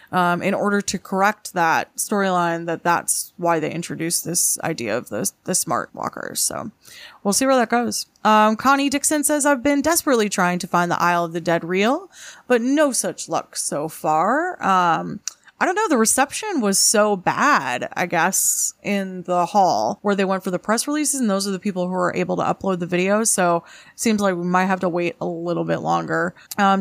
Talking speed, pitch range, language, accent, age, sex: 210 wpm, 175-225 Hz, English, American, 20-39, female